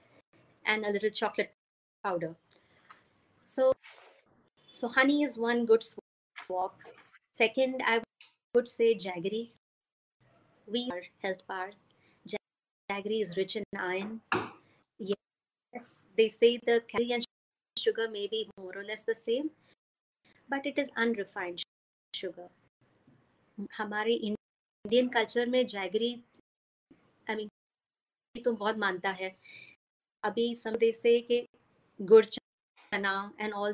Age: 30-49